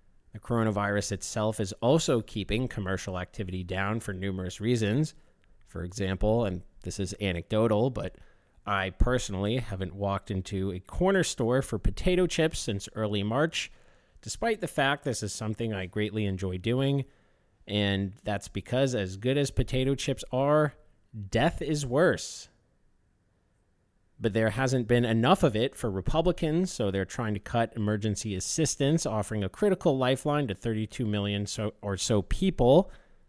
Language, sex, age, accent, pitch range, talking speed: English, male, 30-49, American, 100-130 Hz, 145 wpm